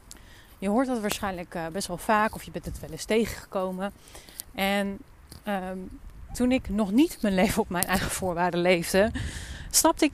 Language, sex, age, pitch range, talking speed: Dutch, female, 30-49, 175-230 Hz, 170 wpm